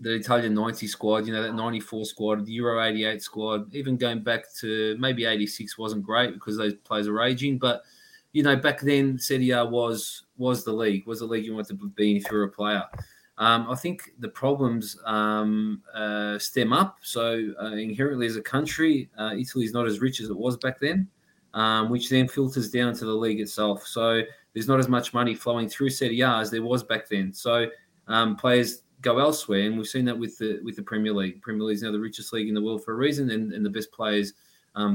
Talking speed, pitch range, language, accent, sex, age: 225 wpm, 110-130 Hz, English, Australian, male, 20-39